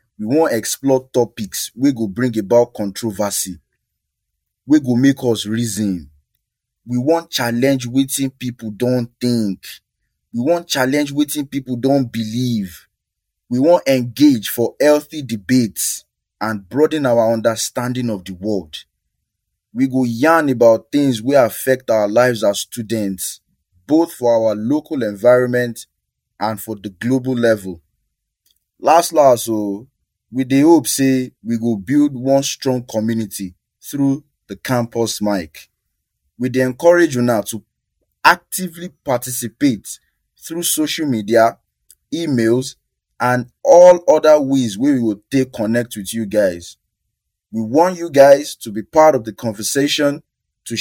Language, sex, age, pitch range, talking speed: English, male, 20-39, 110-140 Hz, 135 wpm